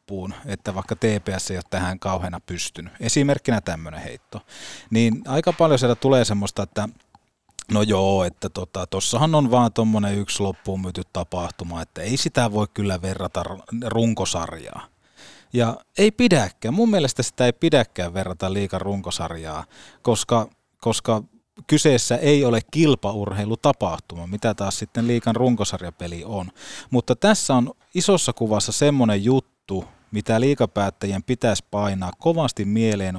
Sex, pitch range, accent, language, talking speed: male, 95-130 Hz, native, Finnish, 135 wpm